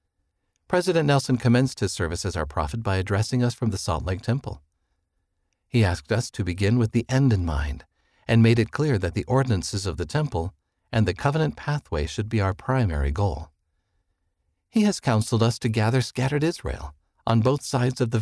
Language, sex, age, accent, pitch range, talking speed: English, male, 50-69, American, 85-120 Hz, 190 wpm